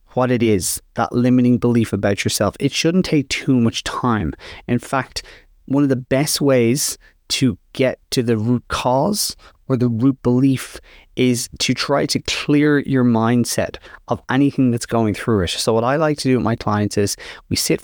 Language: English